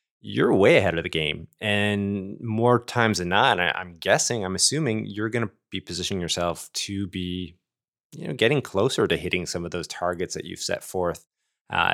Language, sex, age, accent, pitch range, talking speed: English, male, 20-39, American, 85-105 Hz, 190 wpm